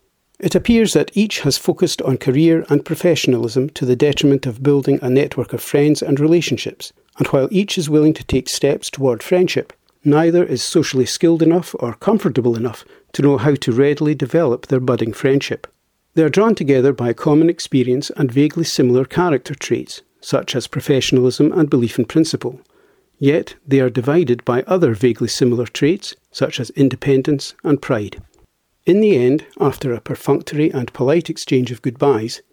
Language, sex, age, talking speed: English, male, 50-69, 170 wpm